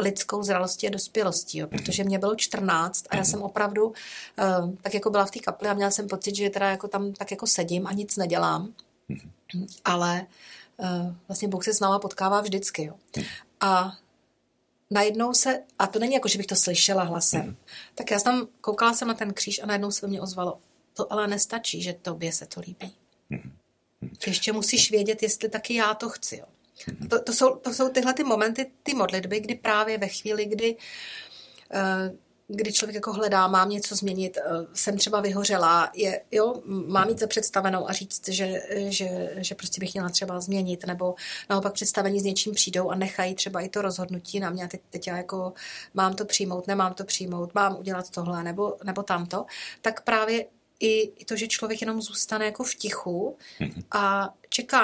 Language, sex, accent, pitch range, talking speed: Czech, female, native, 185-215 Hz, 175 wpm